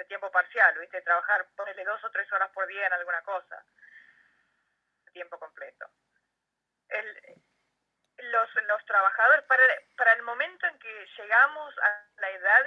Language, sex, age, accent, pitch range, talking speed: Spanish, female, 20-39, Argentinian, 185-260 Hz, 155 wpm